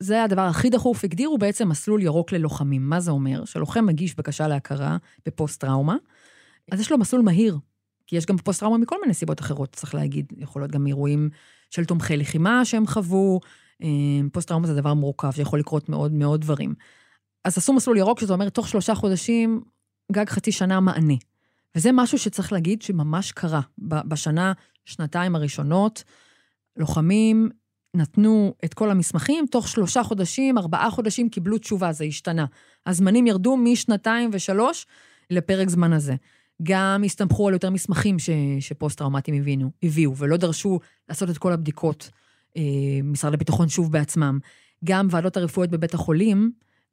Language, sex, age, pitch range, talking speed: Hebrew, female, 20-39, 150-200 Hz, 150 wpm